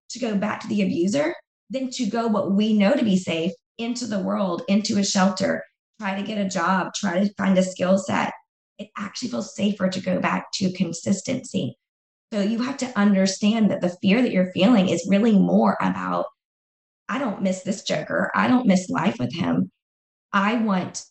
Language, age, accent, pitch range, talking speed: English, 20-39, American, 185-210 Hz, 195 wpm